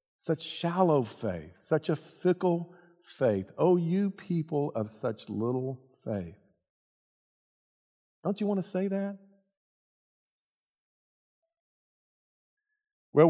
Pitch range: 105-170 Hz